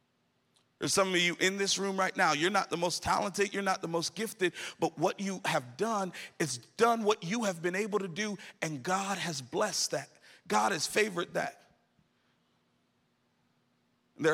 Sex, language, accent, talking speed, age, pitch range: male, English, American, 180 wpm, 40-59, 135-185 Hz